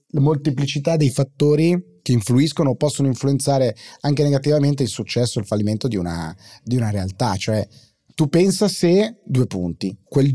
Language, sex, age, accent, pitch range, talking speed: Italian, male, 30-49, native, 110-140 Hz, 155 wpm